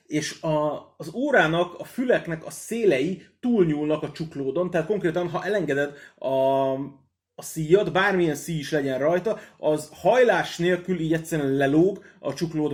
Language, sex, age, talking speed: Hungarian, male, 30-49, 140 wpm